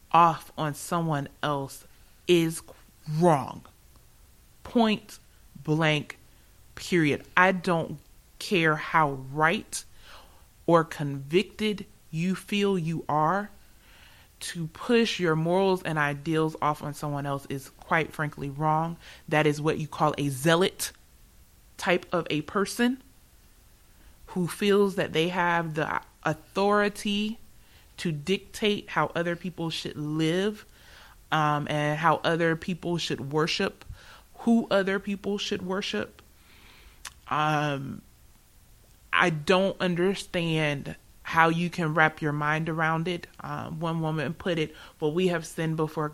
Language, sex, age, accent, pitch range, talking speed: English, female, 30-49, American, 150-185 Hz, 120 wpm